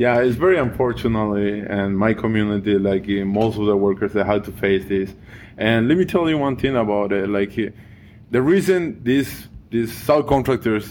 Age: 20-39